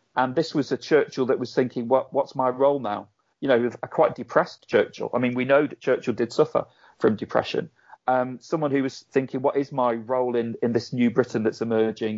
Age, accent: 40-59, British